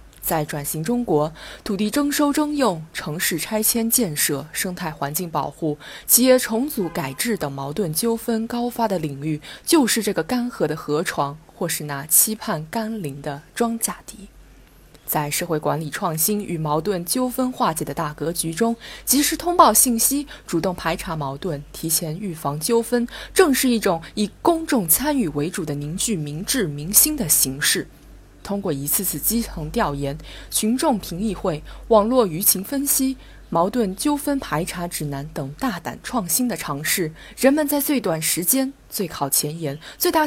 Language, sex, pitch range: Chinese, female, 155-235 Hz